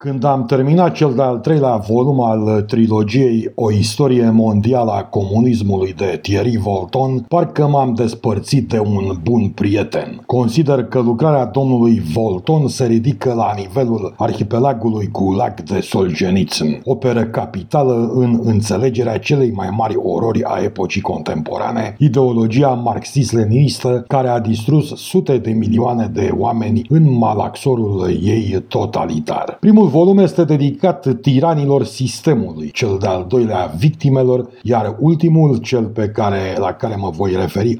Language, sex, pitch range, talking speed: Romanian, male, 110-140 Hz, 130 wpm